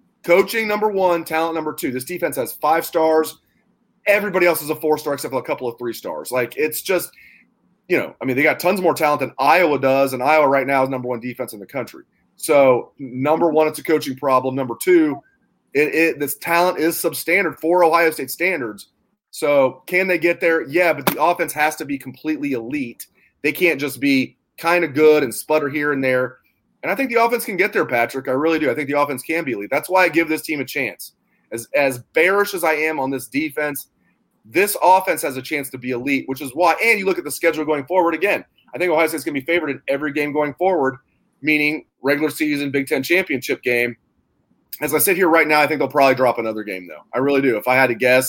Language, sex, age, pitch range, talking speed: English, male, 30-49, 135-170 Hz, 240 wpm